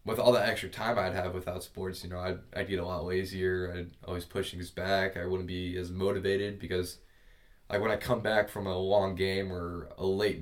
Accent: American